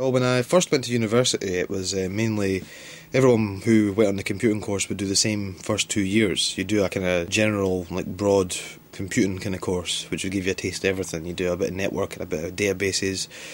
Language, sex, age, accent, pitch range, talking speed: English, male, 20-39, British, 95-110 Hz, 245 wpm